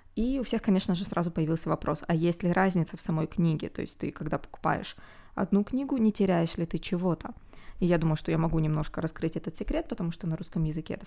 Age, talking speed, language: 20-39, 235 wpm, Russian